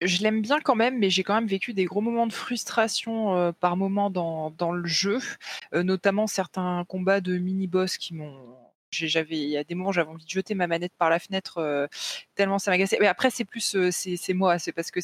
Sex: female